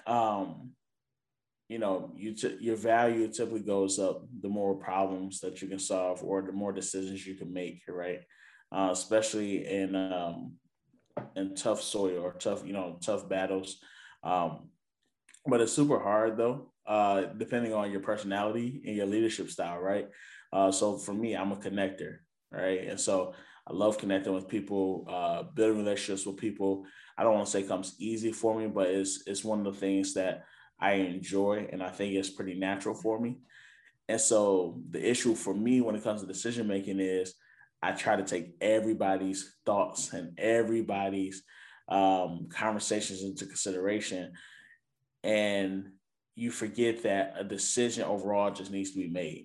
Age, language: 20-39, English